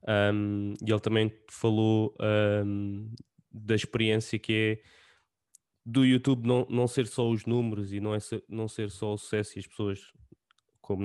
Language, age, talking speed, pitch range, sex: English, 20-39, 145 wpm, 100-110 Hz, male